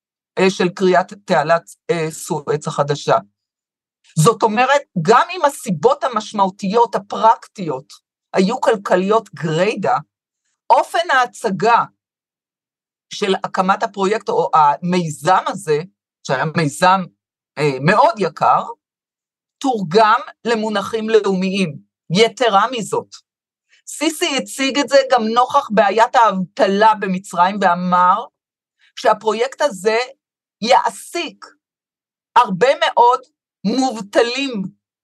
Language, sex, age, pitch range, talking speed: Hebrew, female, 50-69, 170-230 Hz, 85 wpm